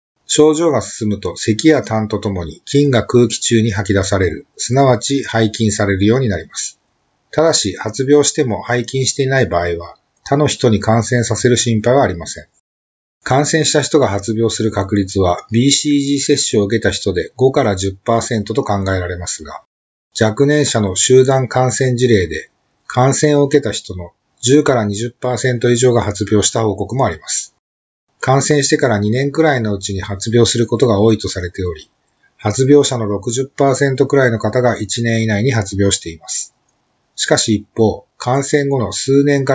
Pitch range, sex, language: 100-130 Hz, male, Japanese